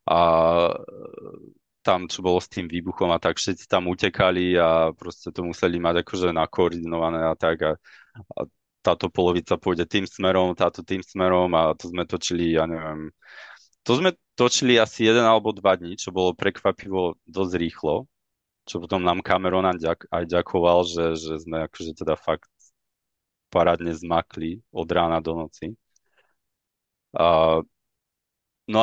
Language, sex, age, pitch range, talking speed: Czech, male, 30-49, 85-100 Hz, 145 wpm